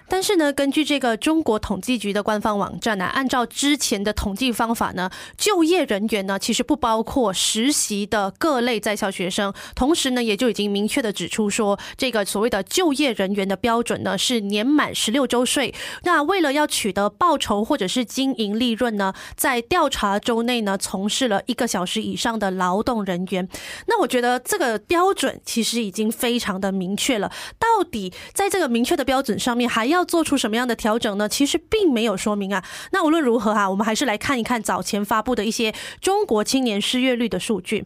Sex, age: female, 20-39